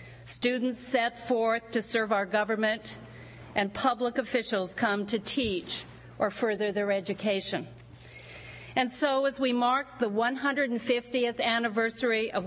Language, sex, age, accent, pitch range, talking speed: English, female, 50-69, American, 195-245 Hz, 125 wpm